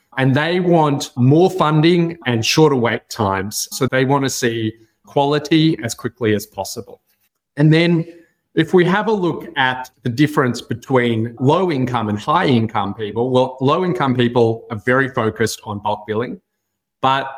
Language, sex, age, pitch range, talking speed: English, male, 30-49, 115-150 Hz, 150 wpm